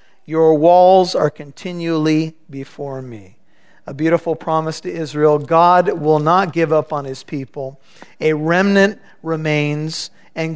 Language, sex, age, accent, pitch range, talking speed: English, male, 50-69, American, 150-170 Hz, 130 wpm